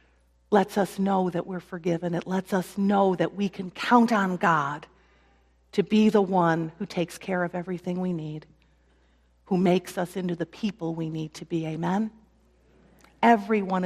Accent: American